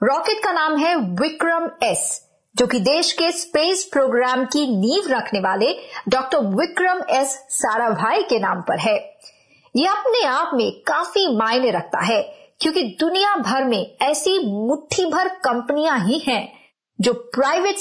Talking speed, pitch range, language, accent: 150 wpm, 250-360 Hz, Hindi, native